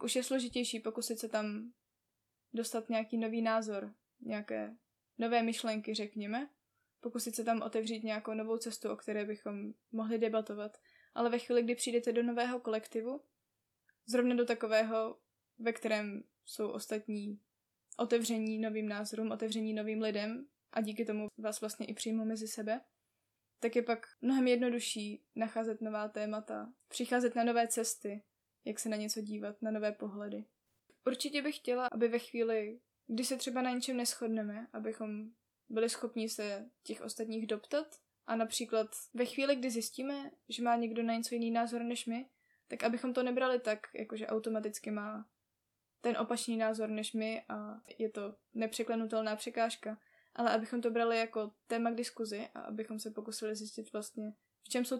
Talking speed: 160 wpm